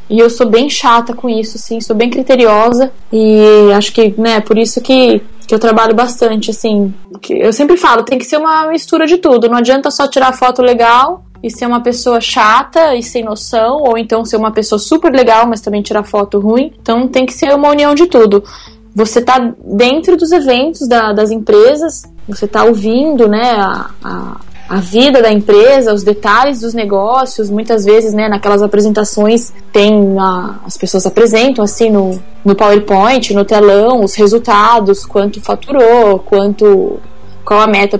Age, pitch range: 10-29, 210-255 Hz